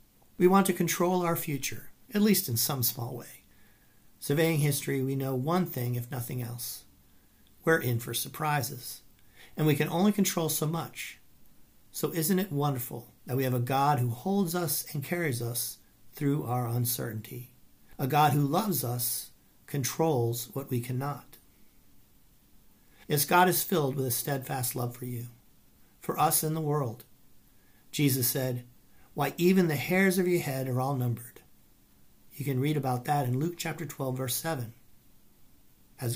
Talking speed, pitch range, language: 165 wpm, 120-155 Hz, English